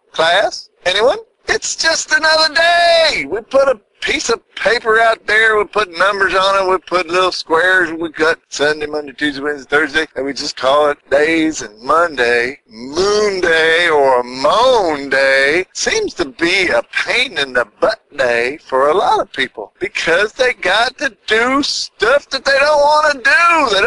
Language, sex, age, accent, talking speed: English, male, 50-69, American, 175 wpm